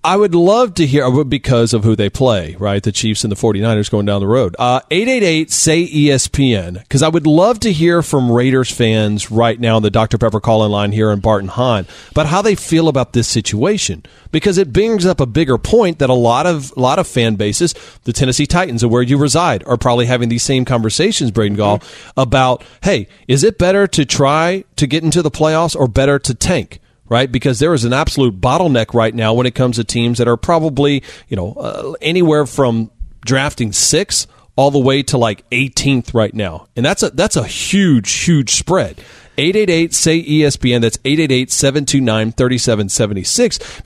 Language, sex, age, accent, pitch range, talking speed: English, male, 40-59, American, 115-160 Hz, 195 wpm